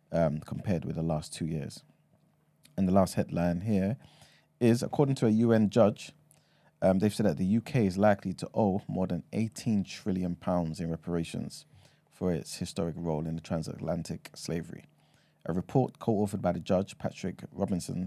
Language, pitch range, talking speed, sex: English, 85-105 Hz, 170 wpm, male